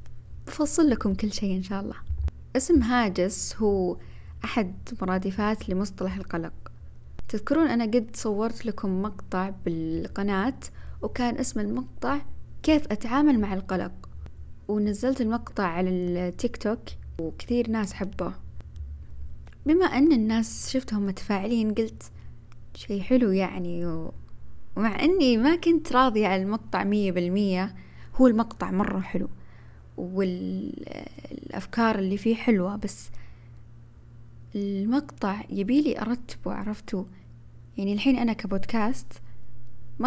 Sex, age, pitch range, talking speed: female, 20-39, 180-235 Hz, 110 wpm